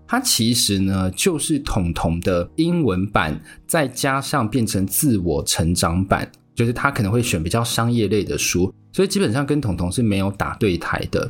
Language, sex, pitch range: Chinese, male, 95-140 Hz